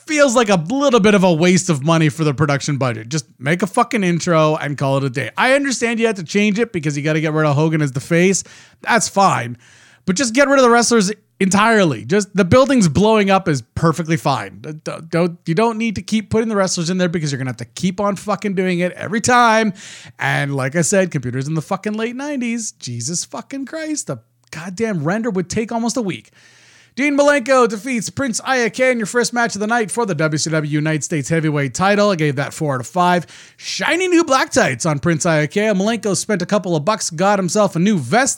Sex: male